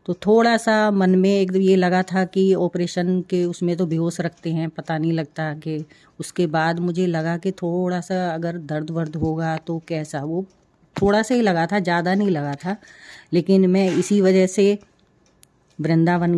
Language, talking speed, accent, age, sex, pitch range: Hindi, 185 wpm, native, 30-49, female, 150-175 Hz